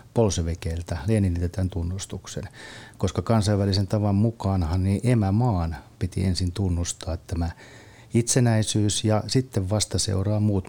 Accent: native